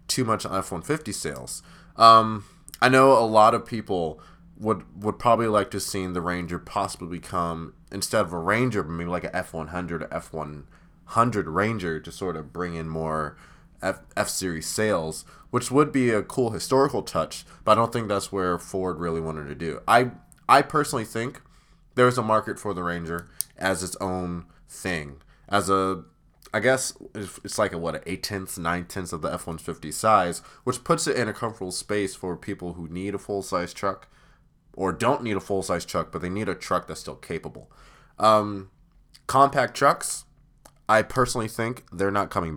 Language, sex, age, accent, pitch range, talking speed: English, male, 20-39, American, 85-110 Hz, 175 wpm